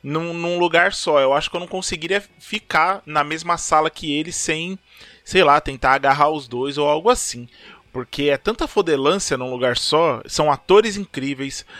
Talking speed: 185 wpm